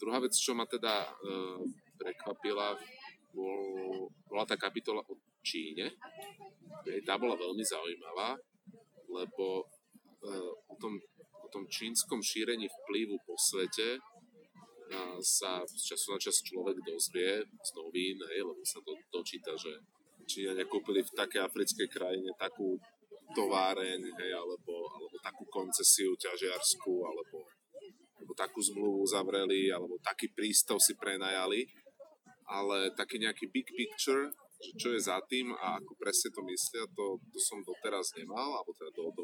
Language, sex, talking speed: Slovak, male, 140 wpm